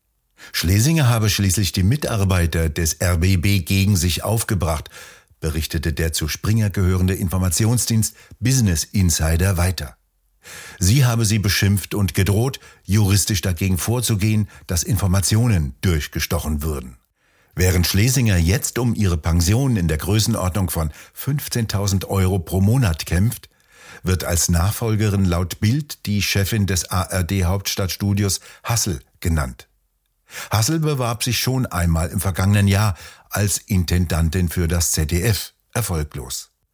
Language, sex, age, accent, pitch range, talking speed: German, male, 60-79, German, 90-110 Hz, 120 wpm